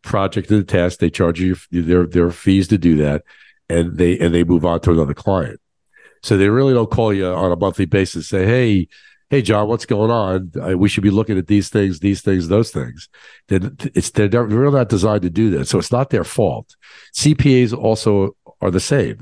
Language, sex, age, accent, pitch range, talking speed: English, male, 50-69, American, 90-115 Hz, 220 wpm